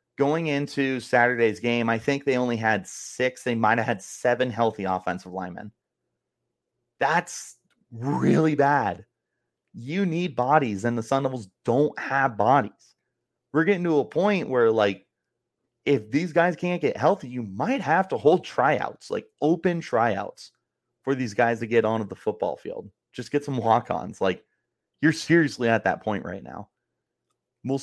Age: 30-49